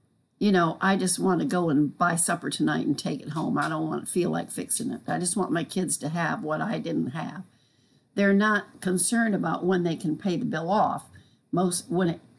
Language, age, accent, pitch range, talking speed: English, 60-79, American, 160-205 Hz, 230 wpm